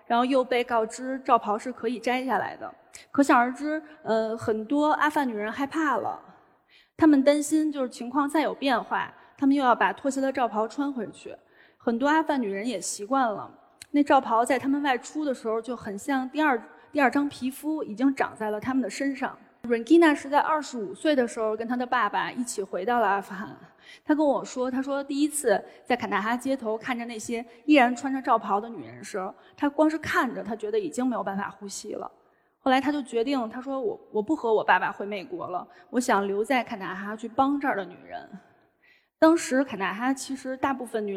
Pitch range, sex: 225-290 Hz, female